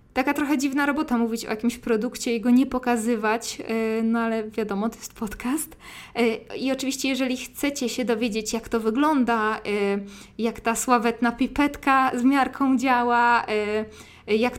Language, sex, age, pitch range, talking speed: Polish, female, 20-39, 215-250 Hz, 145 wpm